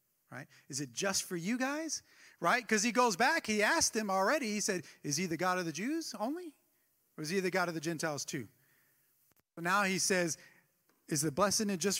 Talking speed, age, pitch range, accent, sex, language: 215 wpm, 40-59, 145-220 Hz, American, male, English